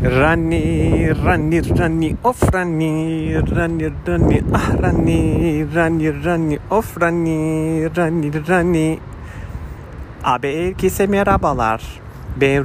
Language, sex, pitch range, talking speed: Turkish, male, 110-145 Hz, 90 wpm